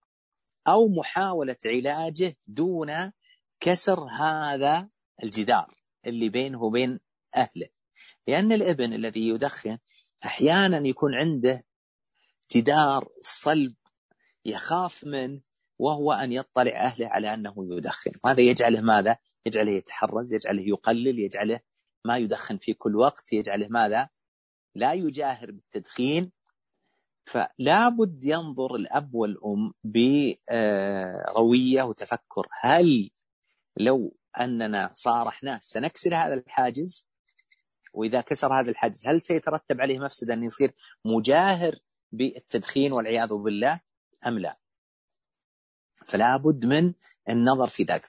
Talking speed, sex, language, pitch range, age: 100 wpm, male, Arabic, 115-160 Hz, 40-59